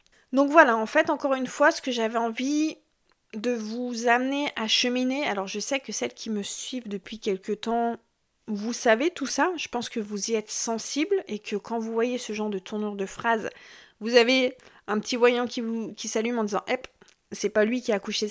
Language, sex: French, female